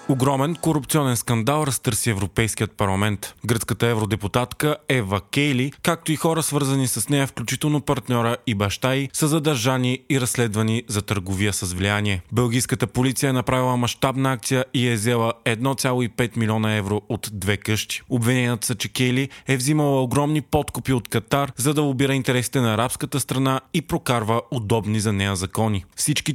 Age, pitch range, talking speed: 30-49, 110-140 Hz, 155 wpm